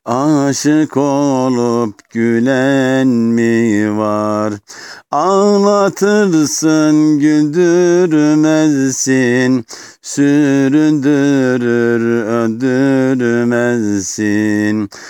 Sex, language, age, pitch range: male, Turkish, 50-69, 115-155 Hz